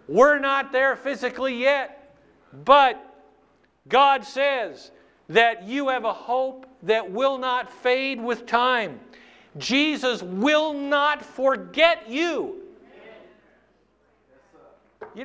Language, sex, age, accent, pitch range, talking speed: English, male, 50-69, American, 165-275 Hz, 100 wpm